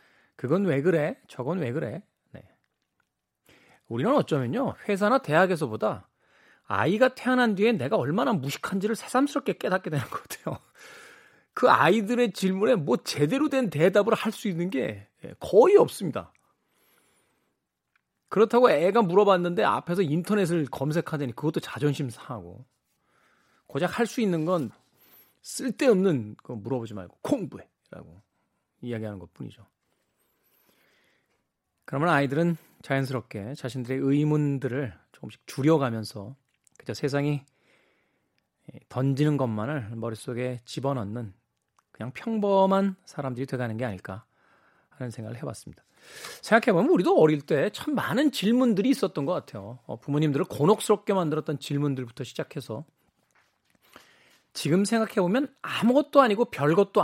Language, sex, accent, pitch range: Korean, male, native, 130-205 Hz